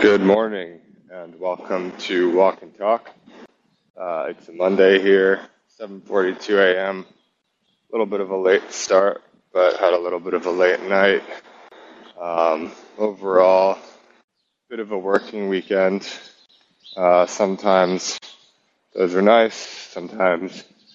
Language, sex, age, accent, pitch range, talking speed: English, male, 20-39, American, 90-100 Hz, 125 wpm